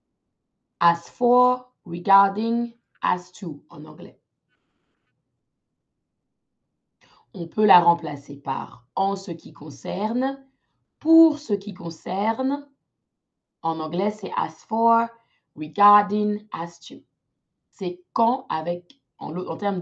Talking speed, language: 105 wpm, French